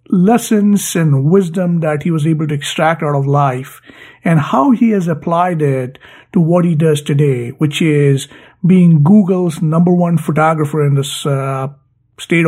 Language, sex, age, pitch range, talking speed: English, male, 50-69, 150-190 Hz, 160 wpm